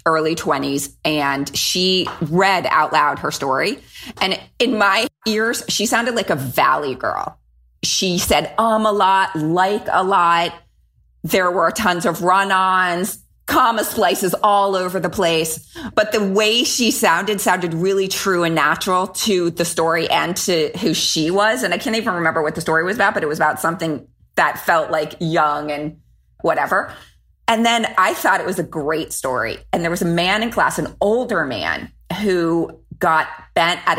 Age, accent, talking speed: 30-49, American, 175 wpm